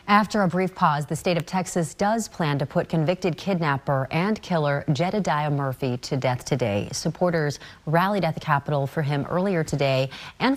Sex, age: female, 30-49